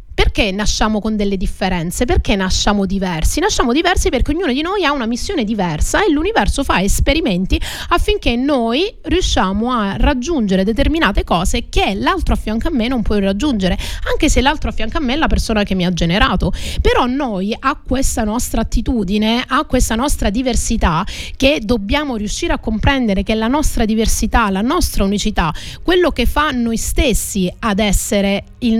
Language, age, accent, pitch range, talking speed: Italian, 30-49, native, 205-270 Hz, 170 wpm